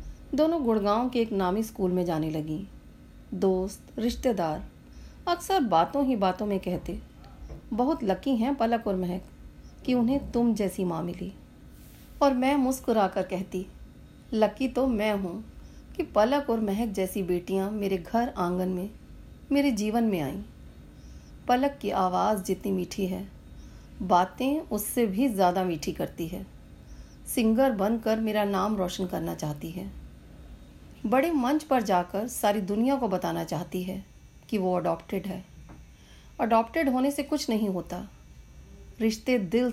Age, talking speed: 40-59, 125 wpm